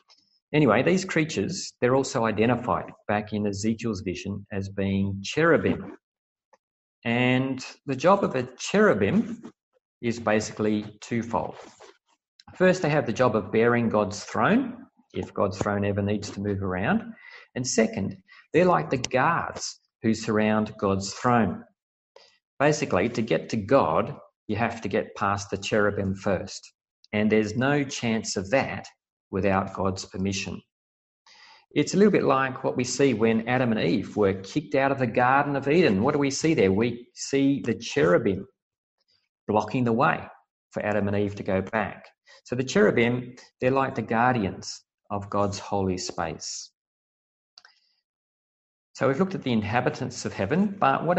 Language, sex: English, male